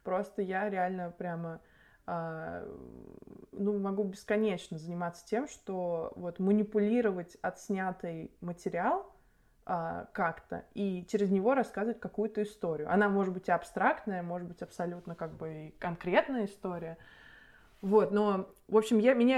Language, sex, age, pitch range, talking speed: Russian, female, 20-39, 180-220 Hz, 120 wpm